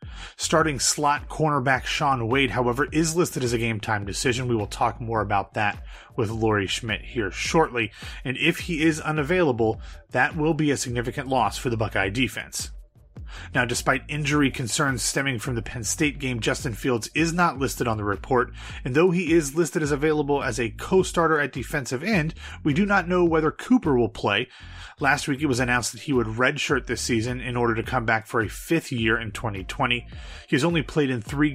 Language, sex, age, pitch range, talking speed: English, male, 30-49, 110-145 Hz, 200 wpm